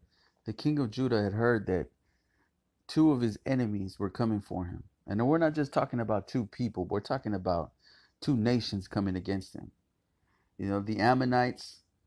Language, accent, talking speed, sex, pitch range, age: English, American, 175 wpm, male, 95-125 Hz, 30-49